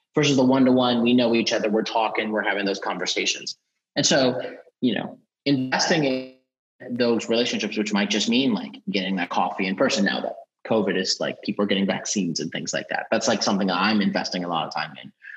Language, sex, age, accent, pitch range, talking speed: English, male, 30-49, American, 110-140 Hz, 225 wpm